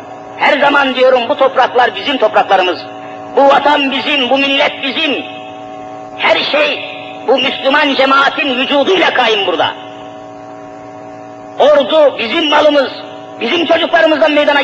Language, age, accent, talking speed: Turkish, 50-69, native, 110 wpm